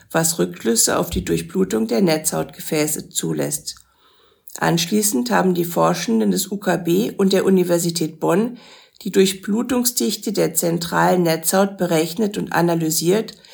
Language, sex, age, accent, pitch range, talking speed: German, female, 50-69, German, 170-215 Hz, 115 wpm